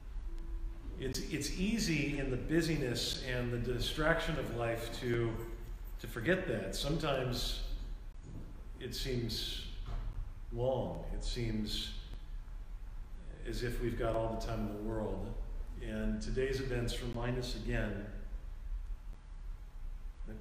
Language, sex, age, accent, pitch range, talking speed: English, male, 40-59, American, 100-130 Hz, 110 wpm